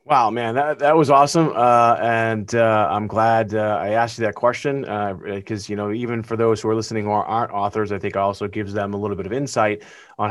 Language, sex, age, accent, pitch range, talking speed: English, male, 30-49, American, 100-120 Hz, 245 wpm